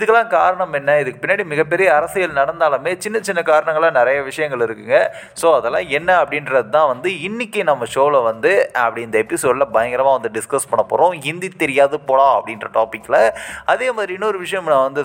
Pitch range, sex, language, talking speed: 130-190 Hz, male, Tamil, 170 wpm